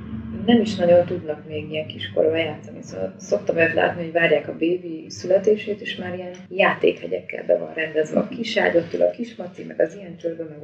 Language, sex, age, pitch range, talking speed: Hungarian, female, 20-39, 160-200 Hz, 190 wpm